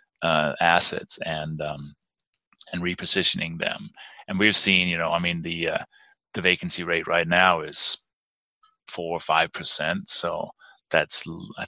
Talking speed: 150 wpm